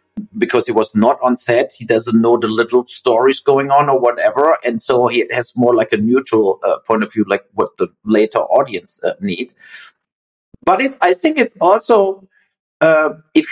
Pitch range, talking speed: 125-165 Hz, 185 wpm